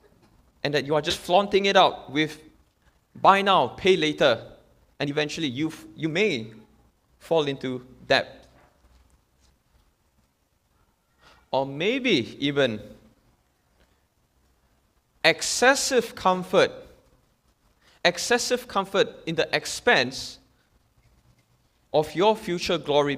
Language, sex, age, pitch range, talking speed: English, male, 20-39, 125-180 Hz, 90 wpm